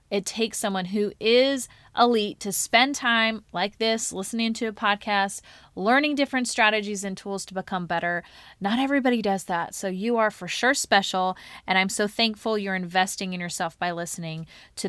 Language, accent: English, American